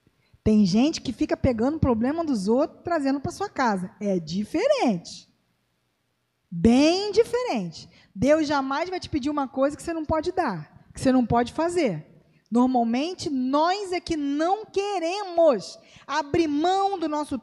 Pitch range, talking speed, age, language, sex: 230-325 Hz, 155 wpm, 20-39, Portuguese, female